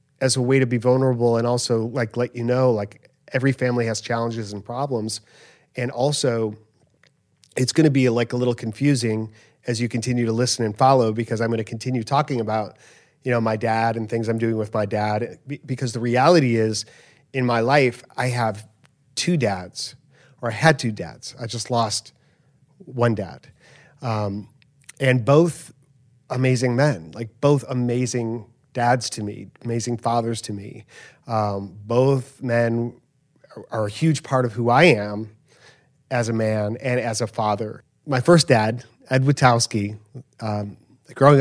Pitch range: 115-135 Hz